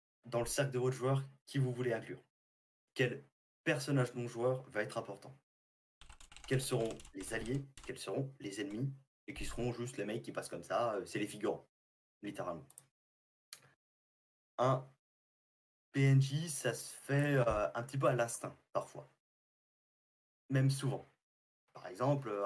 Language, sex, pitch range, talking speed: French, male, 100-135 Hz, 140 wpm